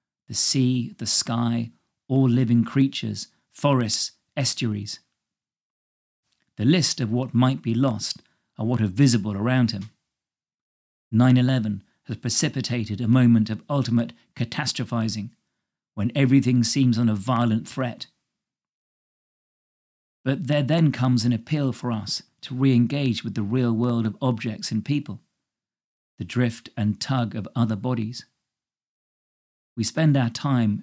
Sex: male